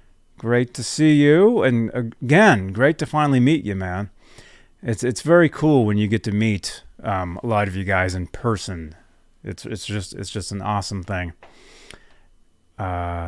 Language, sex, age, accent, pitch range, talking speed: English, male, 30-49, American, 110-155 Hz, 170 wpm